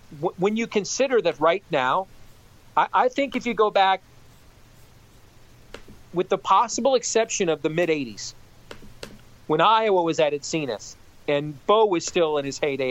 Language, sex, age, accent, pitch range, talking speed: English, male, 40-59, American, 145-190 Hz, 150 wpm